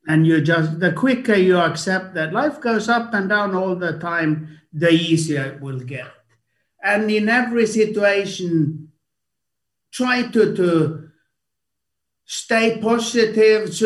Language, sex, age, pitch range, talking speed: English, male, 60-79, 160-220 Hz, 130 wpm